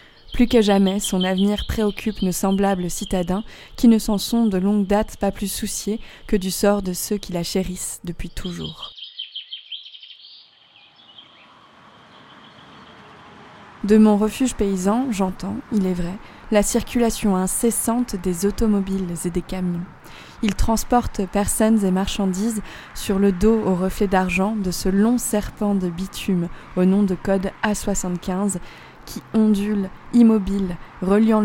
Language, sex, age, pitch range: French, female, 20-39, 190-215 Hz